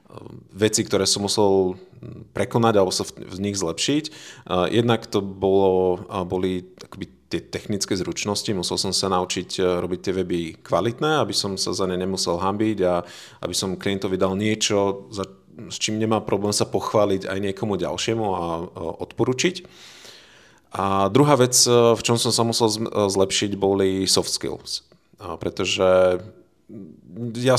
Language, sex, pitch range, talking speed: Slovak, male, 95-115 Hz, 145 wpm